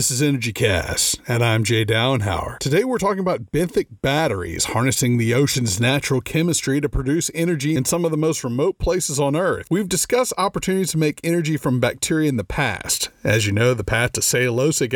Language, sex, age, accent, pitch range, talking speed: English, male, 40-59, American, 125-165 Hz, 195 wpm